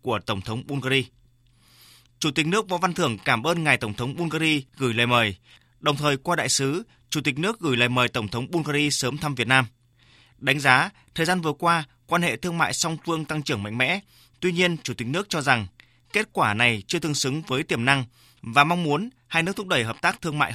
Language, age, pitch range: Vietnamese, 20-39, 125-160 Hz